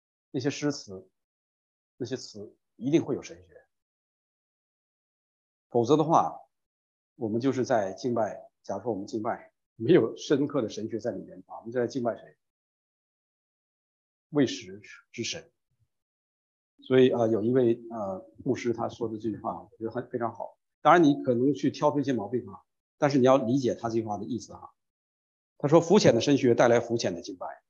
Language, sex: English, male